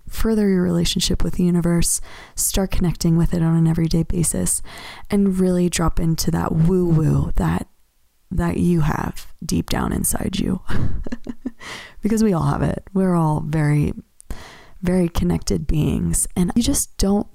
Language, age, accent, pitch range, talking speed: English, 20-39, American, 155-195 Hz, 150 wpm